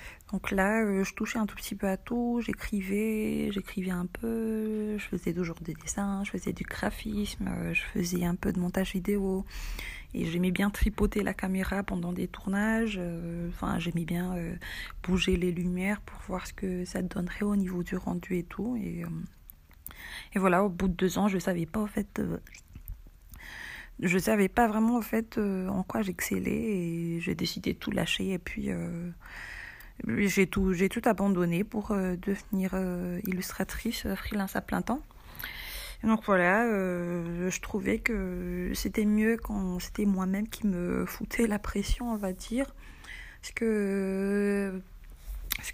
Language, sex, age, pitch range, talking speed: French, female, 20-39, 180-210 Hz, 165 wpm